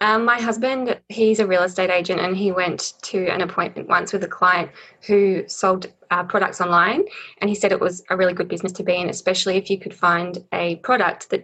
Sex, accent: female, Australian